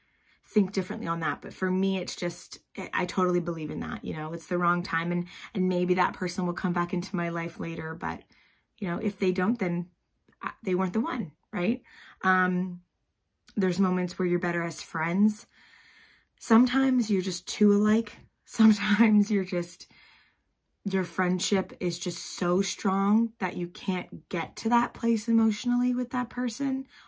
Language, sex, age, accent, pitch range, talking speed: English, female, 20-39, American, 170-210 Hz, 170 wpm